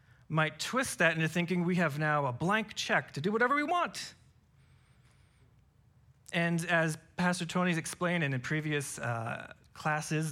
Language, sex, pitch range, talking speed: English, male, 130-180 Hz, 145 wpm